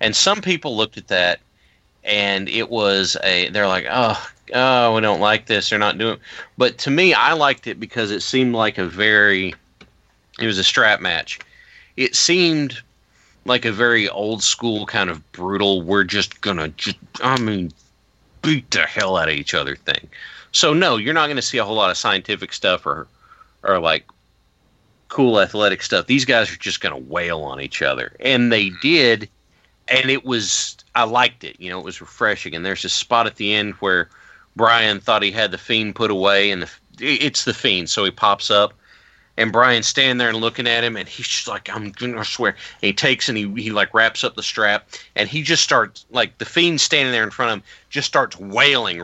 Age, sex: 30-49, male